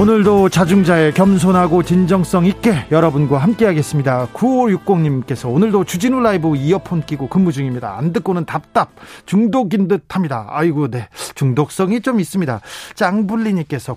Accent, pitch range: native, 140-190 Hz